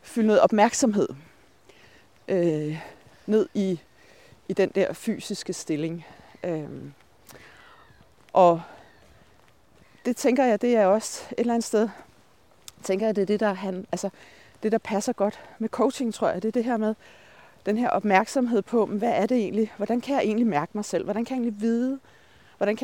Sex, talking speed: female, 160 wpm